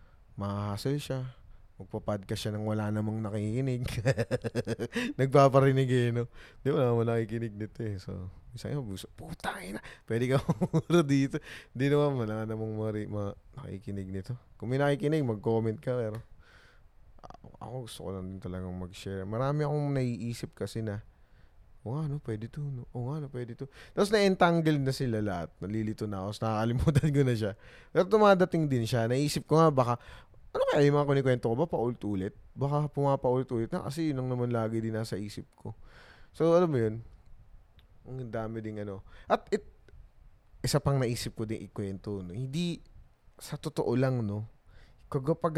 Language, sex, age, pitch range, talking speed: Filipino, male, 20-39, 105-140 Hz, 165 wpm